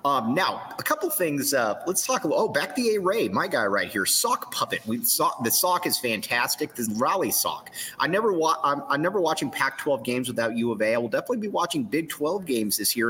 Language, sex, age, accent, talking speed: English, male, 30-49, American, 235 wpm